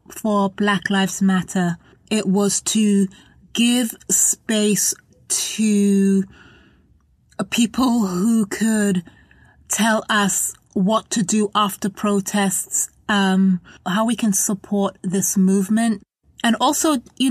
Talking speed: 105 wpm